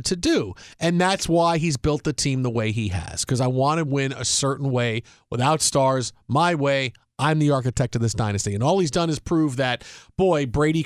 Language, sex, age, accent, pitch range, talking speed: English, male, 40-59, American, 135-205 Hz, 220 wpm